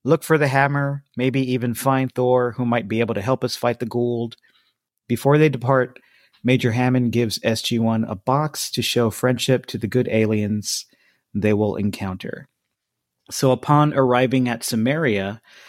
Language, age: English, 40-59